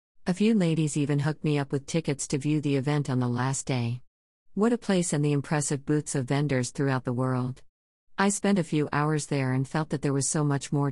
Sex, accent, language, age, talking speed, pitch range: female, American, English, 50-69, 235 wpm, 130-155 Hz